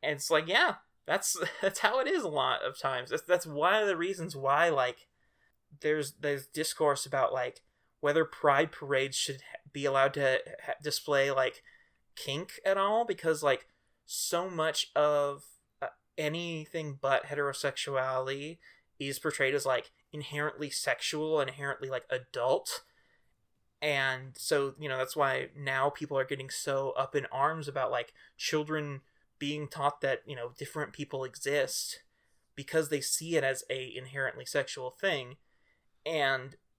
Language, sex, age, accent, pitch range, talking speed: English, male, 20-39, American, 135-165 Hz, 145 wpm